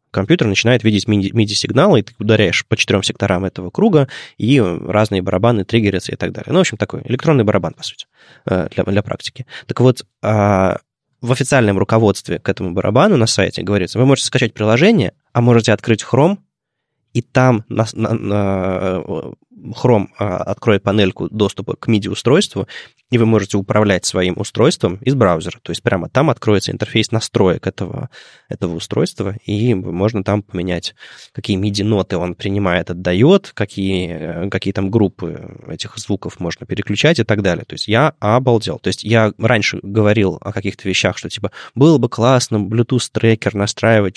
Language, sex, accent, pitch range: Russian, male, native, 95-115 Hz